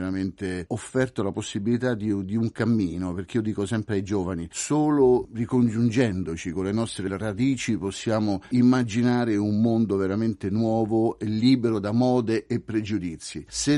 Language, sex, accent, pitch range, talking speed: Italian, male, native, 95-115 Hz, 145 wpm